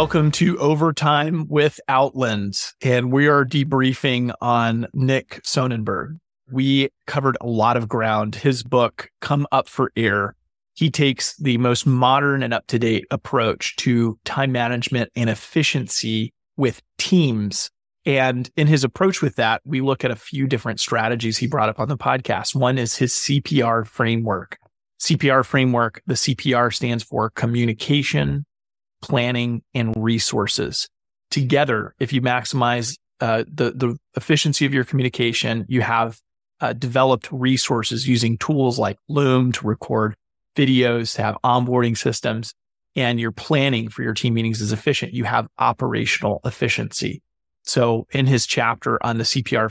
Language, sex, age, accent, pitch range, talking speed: English, male, 30-49, American, 115-135 Hz, 145 wpm